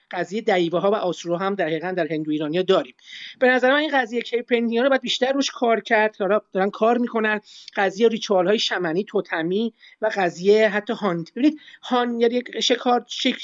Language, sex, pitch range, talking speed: Persian, male, 175-235 Hz, 170 wpm